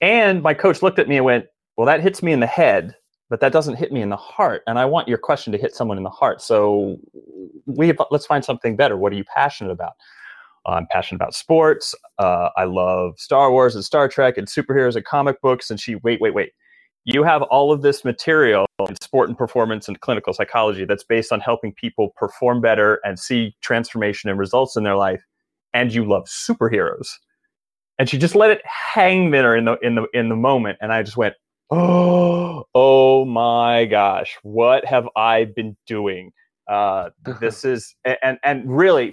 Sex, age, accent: male, 30-49, American